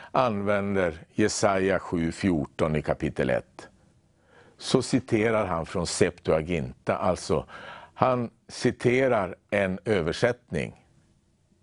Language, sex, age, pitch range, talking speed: English, male, 60-79, 95-115 Hz, 85 wpm